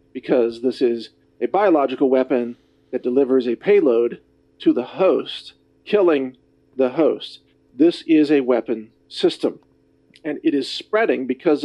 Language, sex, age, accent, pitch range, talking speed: English, male, 50-69, American, 140-215 Hz, 135 wpm